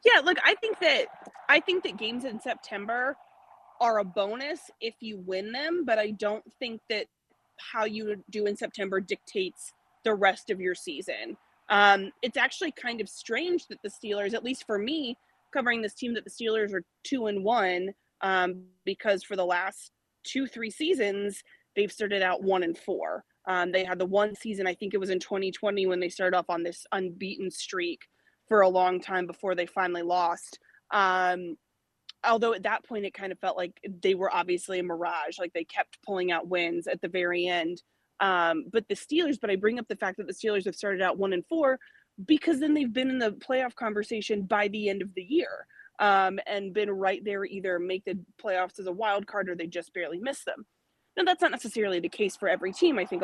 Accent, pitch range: American, 185-235 Hz